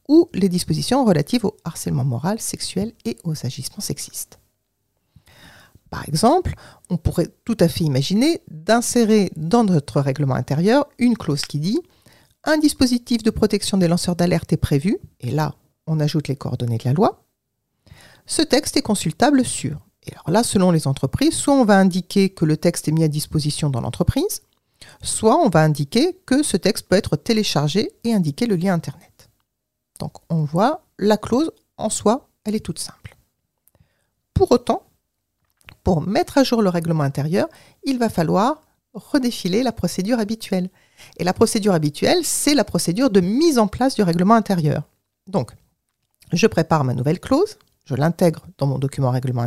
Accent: French